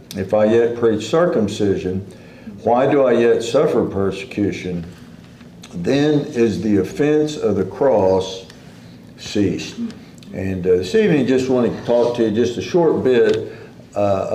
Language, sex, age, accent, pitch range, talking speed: English, male, 60-79, American, 95-115 Hz, 140 wpm